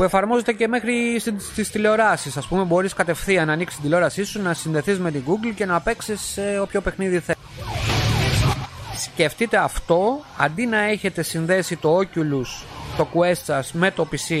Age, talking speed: 30-49, 170 wpm